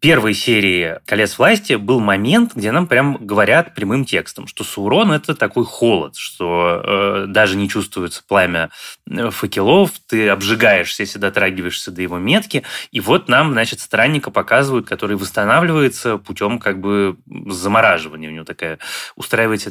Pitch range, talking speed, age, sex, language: 100-125 Hz, 150 wpm, 20-39, male, Russian